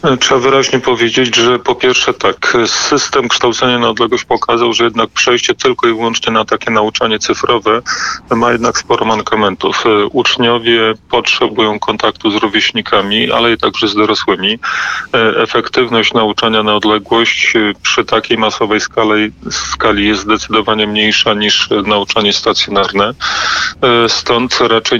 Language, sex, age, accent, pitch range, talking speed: Polish, male, 30-49, native, 105-120 Hz, 125 wpm